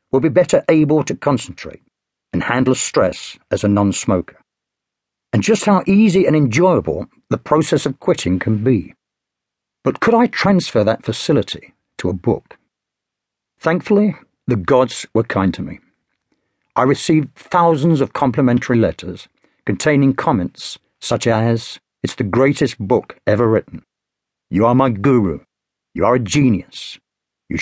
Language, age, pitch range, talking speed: English, 50-69, 110-150 Hz, 140 wpm